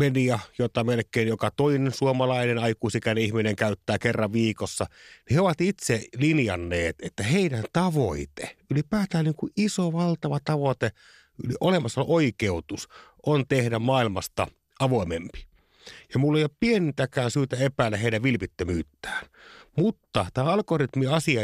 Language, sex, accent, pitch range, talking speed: Finnish, male, native, 105-145 Hz, 125 wpm